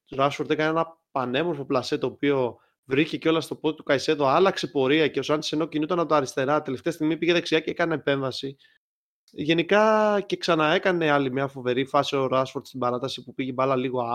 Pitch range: 135-180 Hz